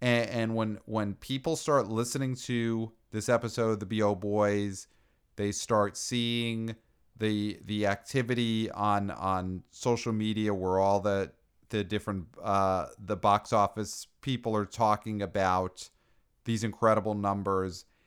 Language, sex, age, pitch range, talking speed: English, male, 40-59, 100-125 Hz, 130 wpm